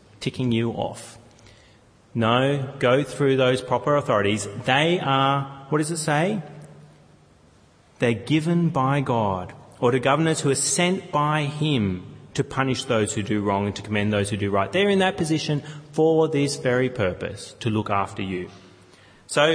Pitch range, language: 105-160 Hz, English